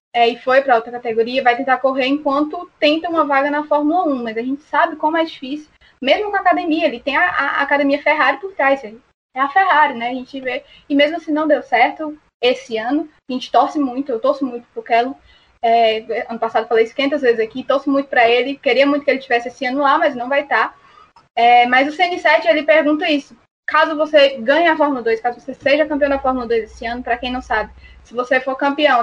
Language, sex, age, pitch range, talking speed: Portuguese, female, 10-29, 245-310 Hz, 225 wpm